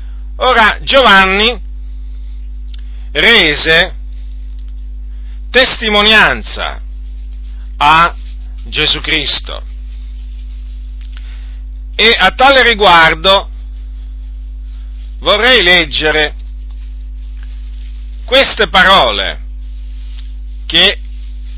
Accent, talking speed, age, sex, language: native, 45 wpm, 50-69, male, Italian